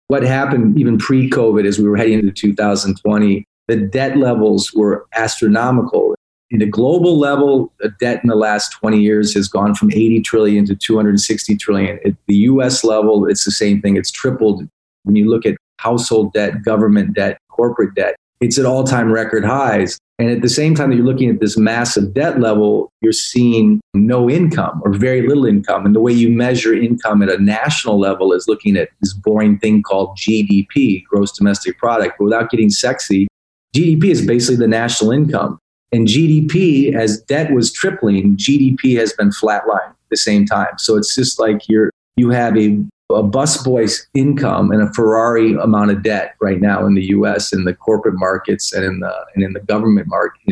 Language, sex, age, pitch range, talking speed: English, male, 40-59, 100-120 Hz, 190 wpm